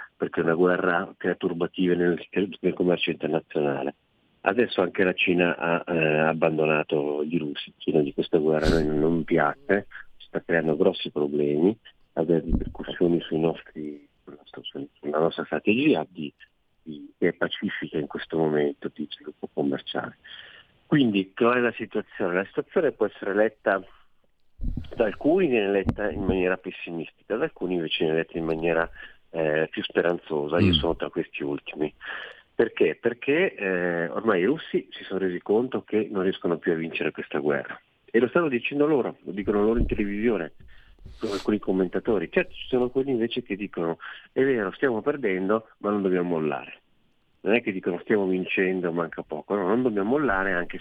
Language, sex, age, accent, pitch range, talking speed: Italian, male, 50-69, native, 80-100 Hz, 165 wpm